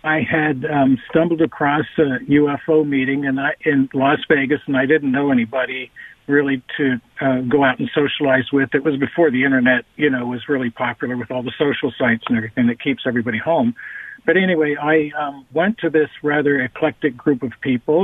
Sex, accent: male, American